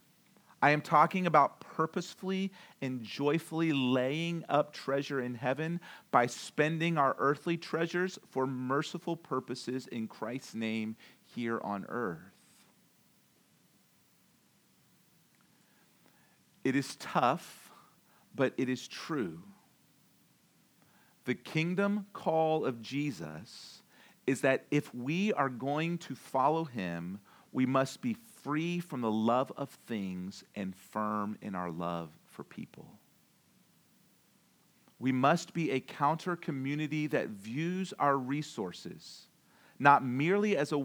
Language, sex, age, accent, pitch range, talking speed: English, male, 40-59, American, 120-160 Hz, 115 wpm